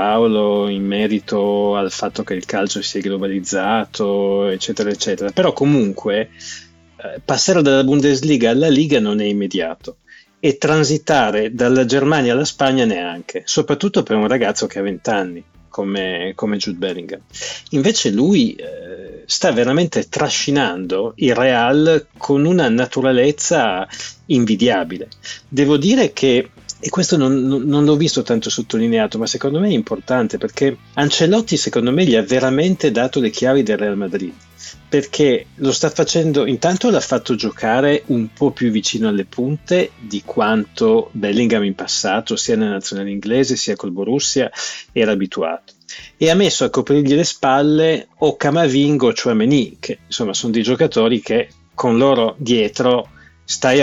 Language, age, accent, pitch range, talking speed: Italian, 30-49, native, 105-155 Hz, 145 wpm